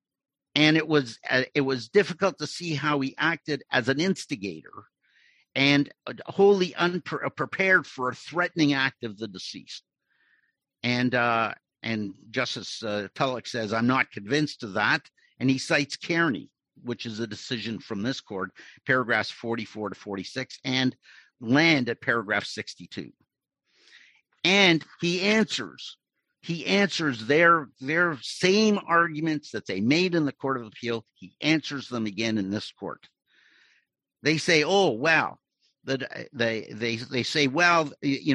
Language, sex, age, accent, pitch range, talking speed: English, male, 50-69, American, 120-170 Hz, 145 wpm